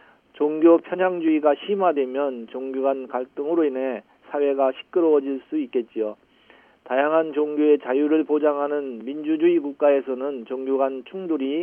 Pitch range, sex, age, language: 130-150 Hz, male, 40-59, Korean